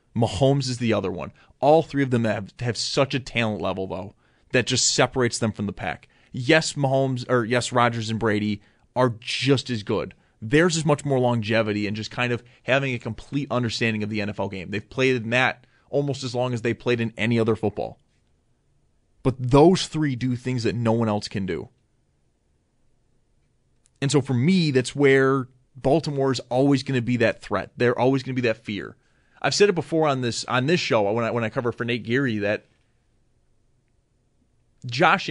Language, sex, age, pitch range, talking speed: English, male, 30-49, 115-135 Hz, 195 wpm